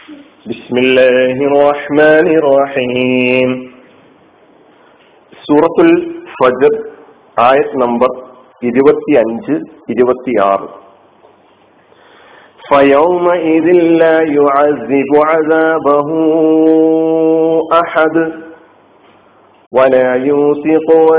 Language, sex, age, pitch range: Malayalam, male, 50-69, 135-165 Hz